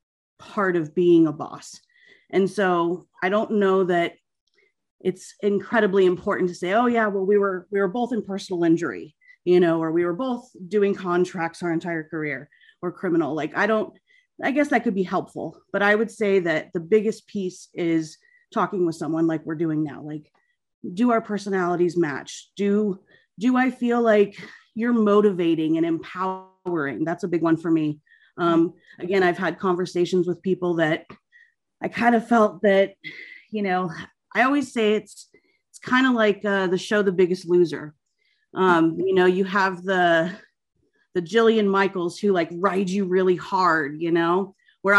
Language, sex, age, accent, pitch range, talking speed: English, female, 30-49, American, 170-210 Hz, 175 wpm